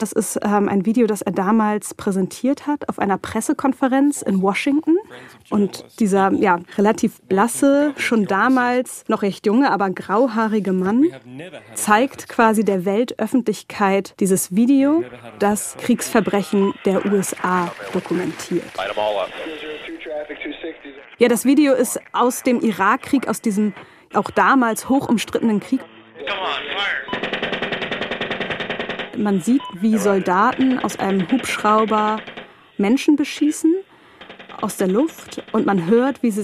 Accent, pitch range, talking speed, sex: German, 195-245 Hz, 115 wpm, female